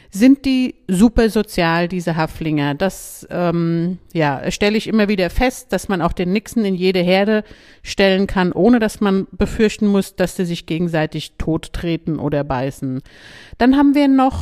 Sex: female